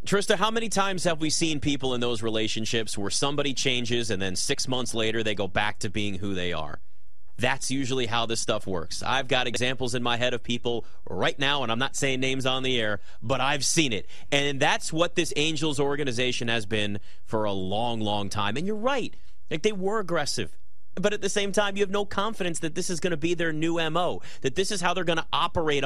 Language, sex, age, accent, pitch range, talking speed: English, male, 30-49, American, 120-180 Hz, 235 wpm